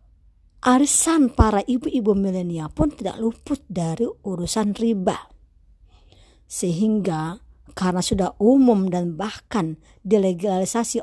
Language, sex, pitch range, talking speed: Indonesian, male, 150-225 Hz, 90 wpm